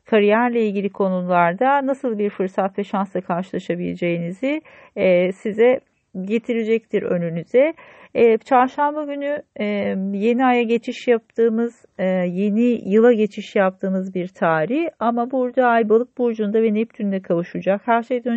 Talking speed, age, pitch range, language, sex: 115 wpm, 40-59, 185-240 Hz, Turkish, female